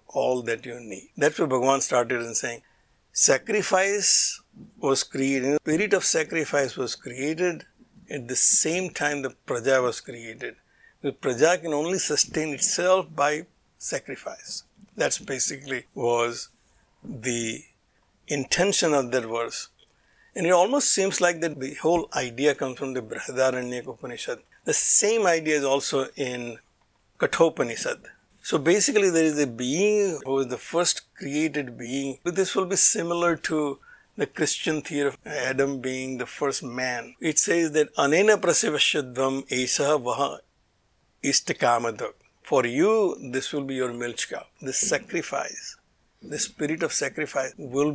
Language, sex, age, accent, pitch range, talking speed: English, male, 60-79, Indian, 130-165 Hz, 140 wpm